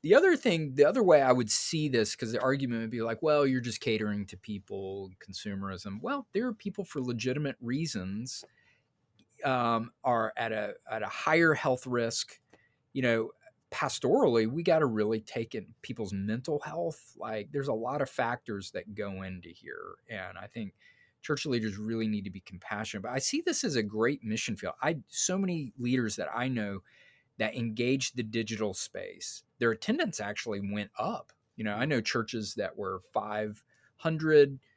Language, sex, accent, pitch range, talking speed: English, male, American, 105-130 Hz, 180 wpm